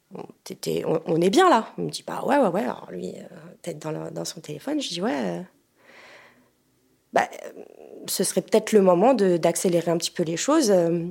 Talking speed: 210 wpm